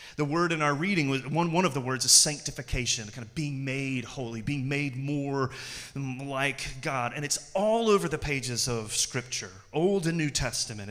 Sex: male